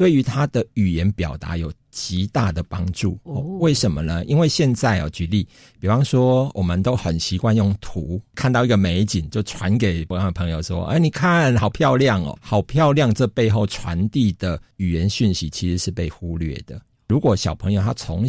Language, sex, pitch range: Chinese, male, 90-120 Hz